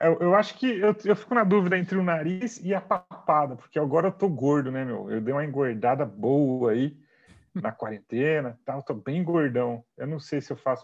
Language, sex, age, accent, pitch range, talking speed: Portuguese, male, 40-59, Brazilian, 130-185 Hz, 220 wpm